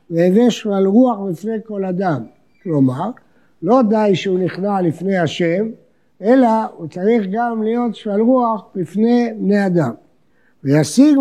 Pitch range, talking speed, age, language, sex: 175-235 Hz, 130 wpm, 50-69, Hebrew, male